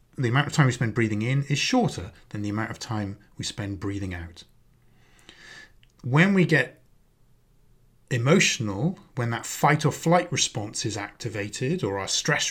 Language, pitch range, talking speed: English, 110-150 Hz, 165 wpm